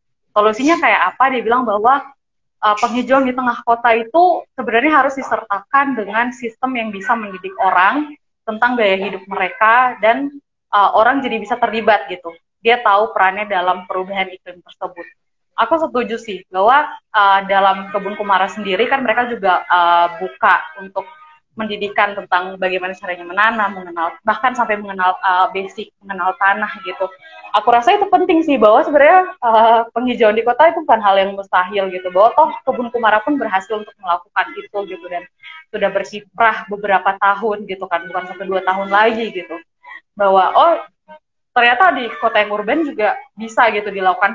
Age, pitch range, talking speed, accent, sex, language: 20-39, 190-245 Hz, 160 wpm, native, female, Indonesian